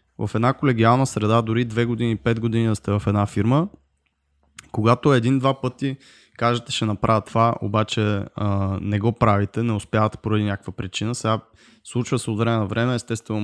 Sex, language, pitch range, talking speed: male, Bulgarian, 105-125 Hz, 165 wpm